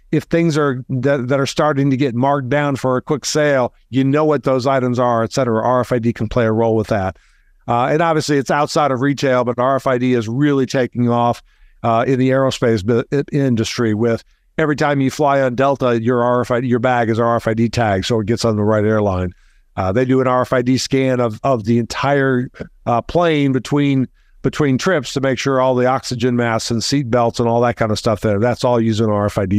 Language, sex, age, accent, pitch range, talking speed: English, male, 50-69, American, 120-140 Hz, 215 wpm